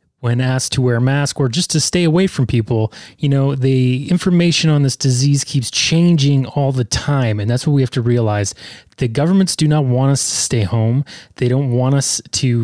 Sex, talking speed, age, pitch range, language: male, 220 wpm, 30-49, 120-155 Hz, English